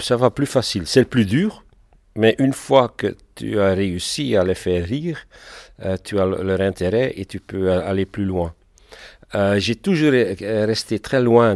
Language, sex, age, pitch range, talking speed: French, male, 50-69, 95-115 Hz, 195 wpm